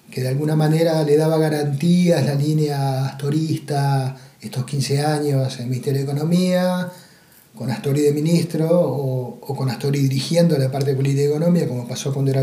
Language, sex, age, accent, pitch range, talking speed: Spanish, male, 30-49, Argentinian, 140-175 Hz, 180 wpm